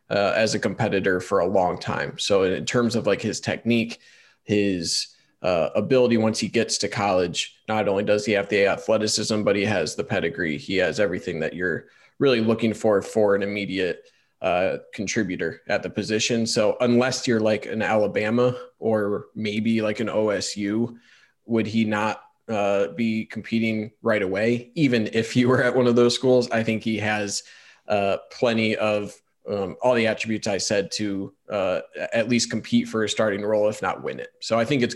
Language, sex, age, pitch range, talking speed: English, male, 20-39, 105-120 Hz, 190 wpm